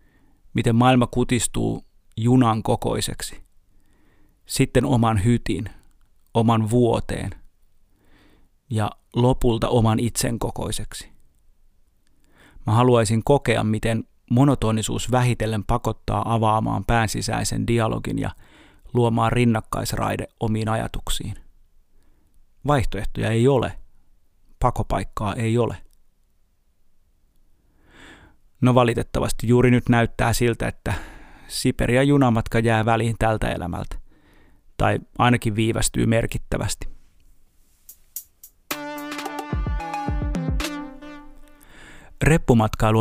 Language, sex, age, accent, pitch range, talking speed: Finnish, male, 30-49, native, 95-120 Hz, 75 wpm